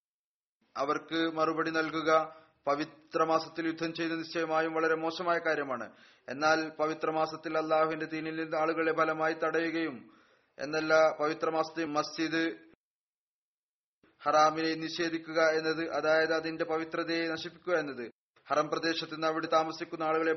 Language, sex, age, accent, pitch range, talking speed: Malayalam, male, 30-49, native, 155-165 Hz, 100 wpm